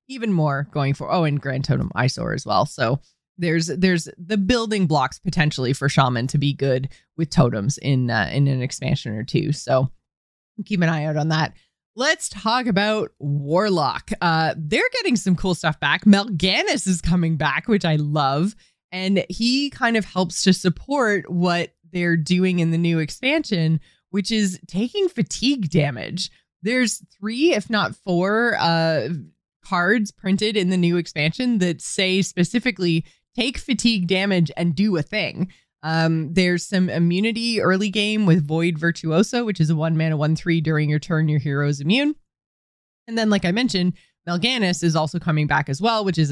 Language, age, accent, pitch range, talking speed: English, 20-39, American, 155-200 Hz, 175 wpm